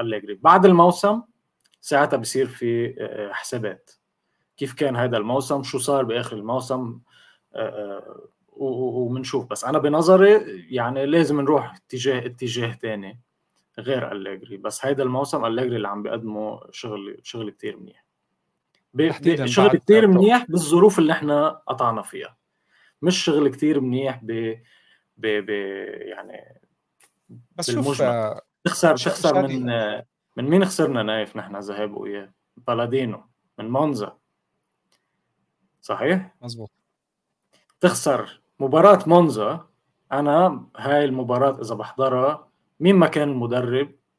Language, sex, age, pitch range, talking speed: Arabic, male, 20-39, 115-150 Hz, 110 wpm